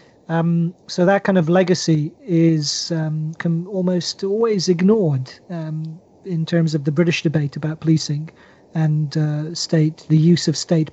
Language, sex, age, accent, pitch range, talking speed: English, male, 40-59, British, 160-180 Hz, 155 wpm